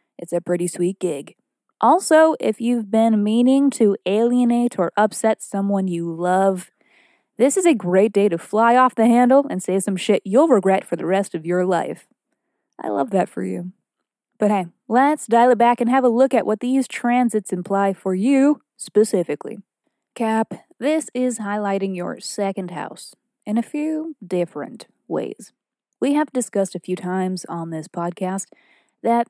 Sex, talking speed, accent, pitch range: female, 170 wpm, American, 175-240 Hz